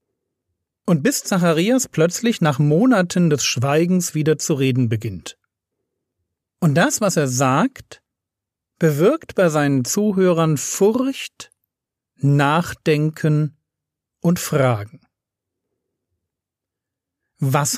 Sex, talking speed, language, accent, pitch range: male, 90 wpm, German, German, 130-185 Hz